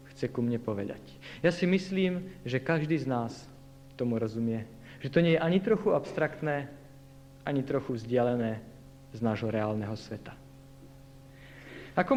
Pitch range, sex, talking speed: 135-160 Hz, male, 140 wpm